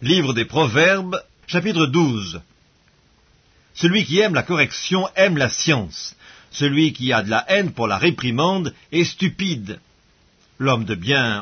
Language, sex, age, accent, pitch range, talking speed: French, male, 50-69, French, 120-165 Hz, 140 wpm